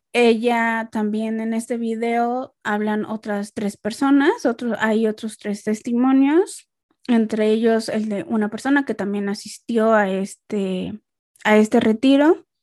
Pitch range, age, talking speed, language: 210-245 Hz, 20-39, 135 wpm, Spanish